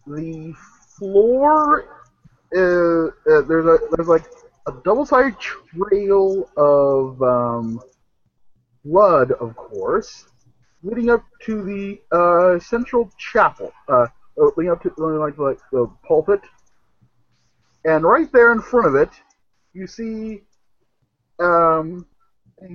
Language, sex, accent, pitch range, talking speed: English, male, American, 140-200 Hz, 110 wpm